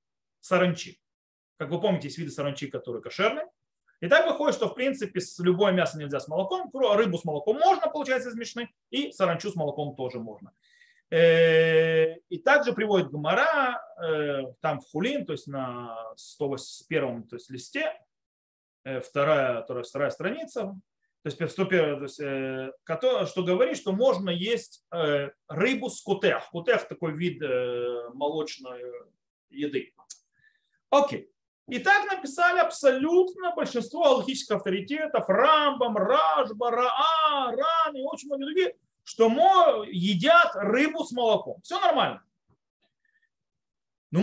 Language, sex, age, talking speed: Russian, male, 30-49, 120 wpm